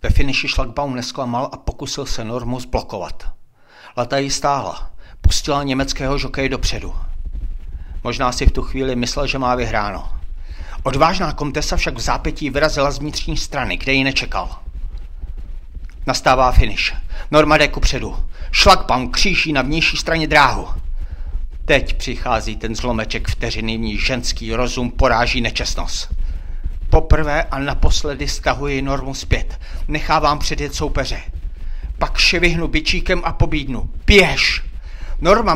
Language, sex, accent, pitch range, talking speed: Czech, male, native, 105-160 Hz, 125 wpm